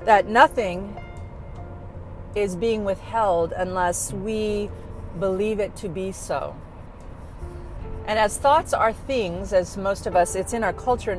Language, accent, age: English, American, 40-59